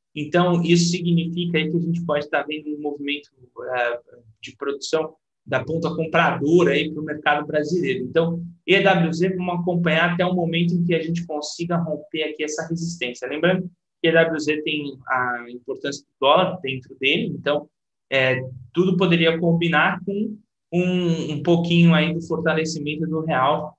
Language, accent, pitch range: Portuguese, Brazilian, 150-180 Hz